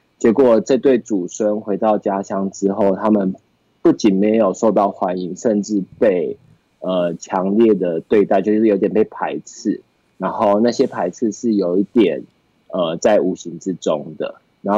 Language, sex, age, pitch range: Chinese, male, 20-39, 95-115 Hz